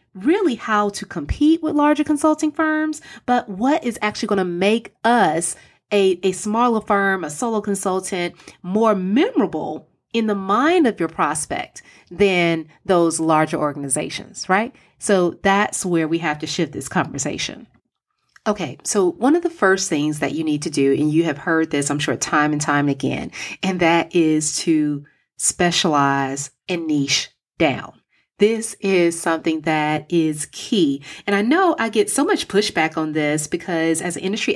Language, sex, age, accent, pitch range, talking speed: English, female, 30-49, American, 160-215 Hz, 165 wpm